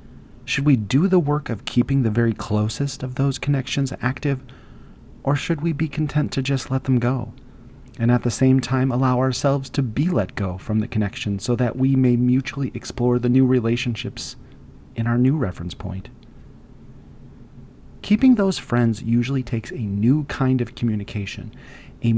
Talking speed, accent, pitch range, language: 170 wpm, American, 110-135 Hz, English